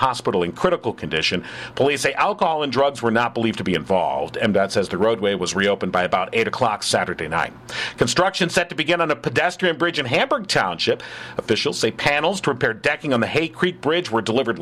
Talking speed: 210 wpm